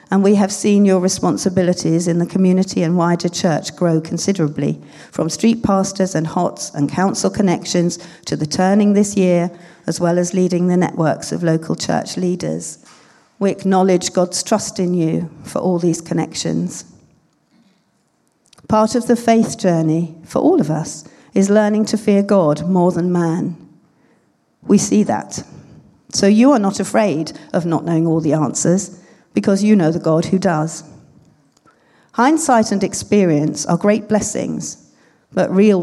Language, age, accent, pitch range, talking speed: English, 40-59, British, 165-200 Hz, 155 wpm